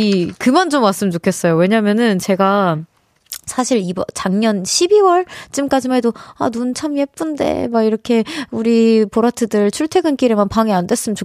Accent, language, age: native, Korean, 20-39